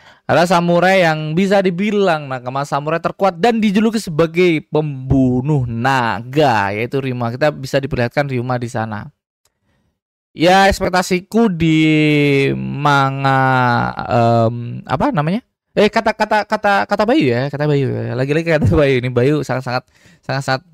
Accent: native